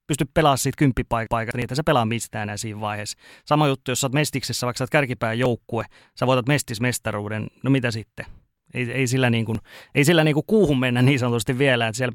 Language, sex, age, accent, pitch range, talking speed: Finnish, male, 30-49, native, 115-140 Hz, 215 wpm